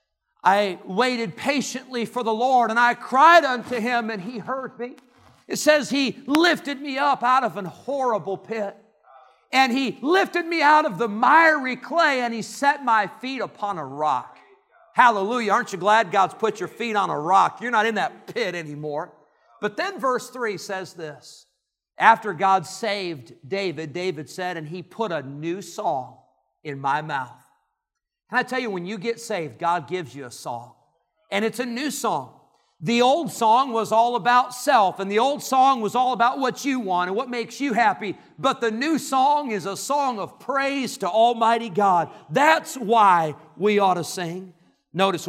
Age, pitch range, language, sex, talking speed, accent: 50-69, 180-250 Hz, English, male, 185 wpm, American